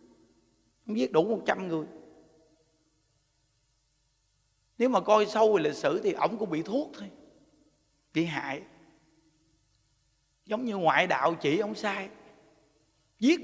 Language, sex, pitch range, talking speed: Vietnamese, male, 135-200 Hz, 125 wpm